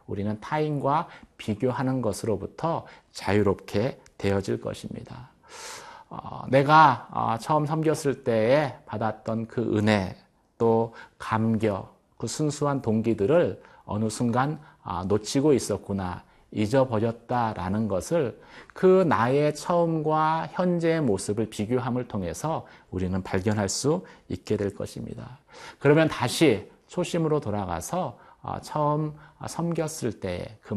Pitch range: 105-145 Hz